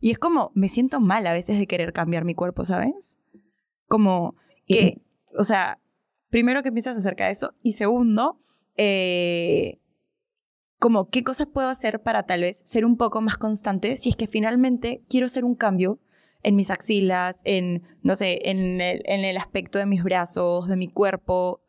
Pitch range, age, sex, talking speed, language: 185-225 Hz, 20-39, female, 180 wpm, Spanish